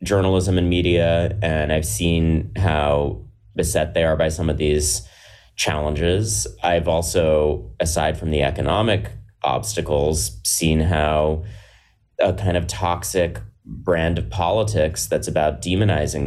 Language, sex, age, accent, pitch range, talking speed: English, male, 30-49, American, 80-105 Hz, 125 wpm